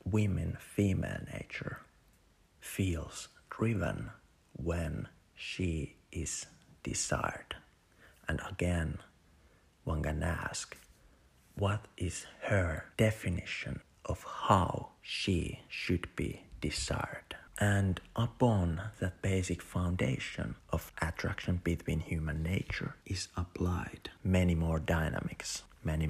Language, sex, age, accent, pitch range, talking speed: English, male, 50-69, Finnish, 80-100 Hz, 90 wpm